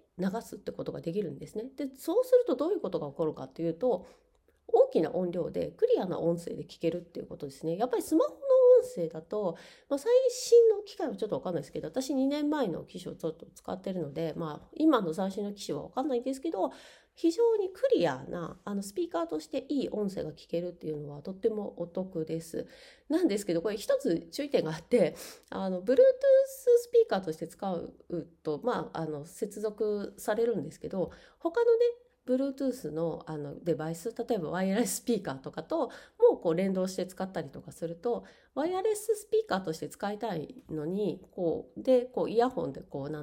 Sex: female